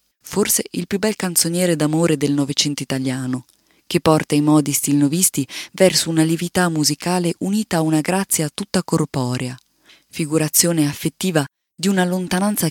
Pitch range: 140-175 Hz